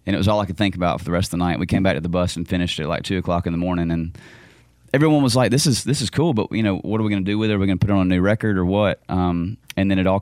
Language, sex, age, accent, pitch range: English, male, 30-49, American, 85-105 Hz